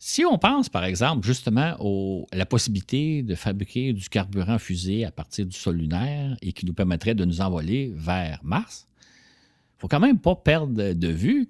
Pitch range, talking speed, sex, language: 85-120 Hz, 195 wpm, male, French